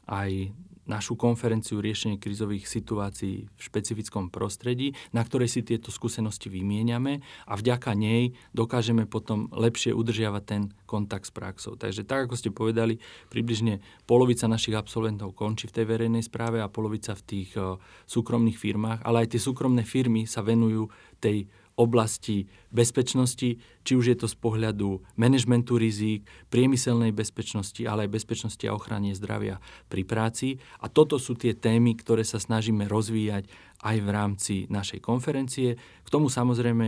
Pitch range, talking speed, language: 100-120 Hz, 150 wpm, Slovak